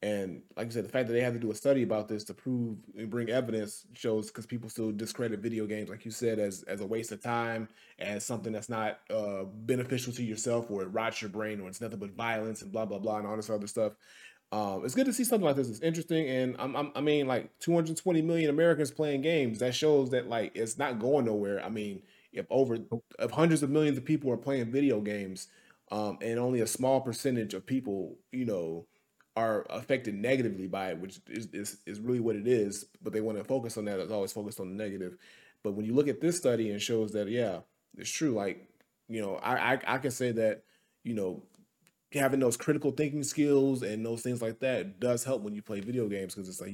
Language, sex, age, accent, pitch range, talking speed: English, male, 30-49, American, 105-130 Hz, 240 wpm